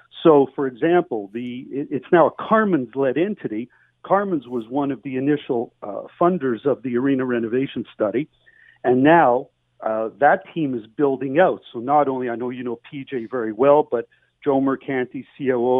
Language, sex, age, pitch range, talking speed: English, male, 50-69, 125-145 Hz, 165 wpm